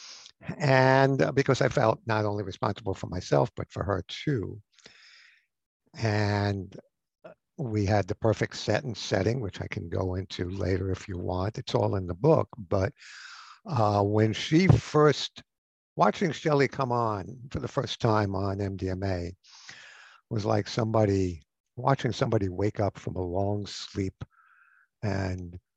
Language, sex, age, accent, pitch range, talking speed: English, male, 60-79, American, 95-125 Hz, 150 wpm